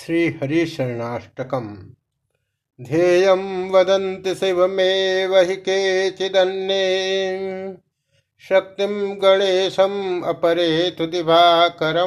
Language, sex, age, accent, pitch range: Hindi, male, 50-69, native, 140-180 Hz